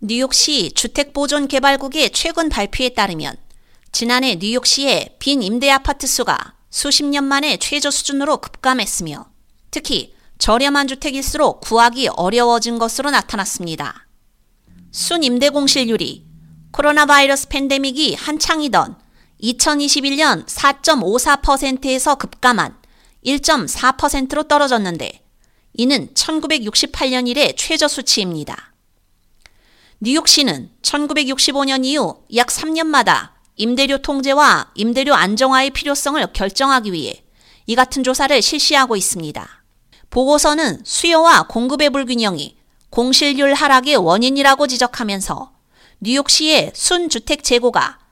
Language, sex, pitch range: Korean, female, 240-290 Hz